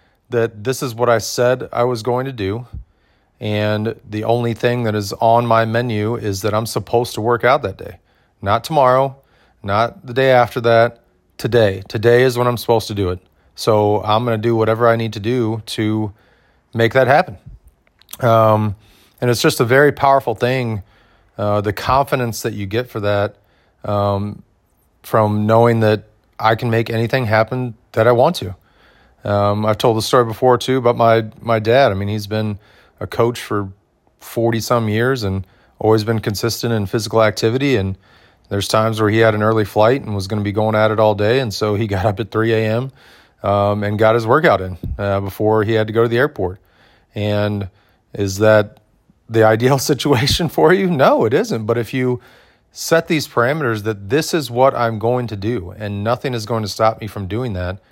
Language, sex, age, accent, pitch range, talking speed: English, male, 30-49, American, 105-120 Hz, 200 wpm